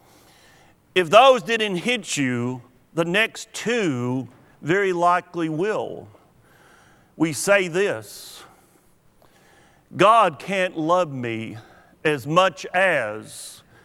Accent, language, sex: American, English, male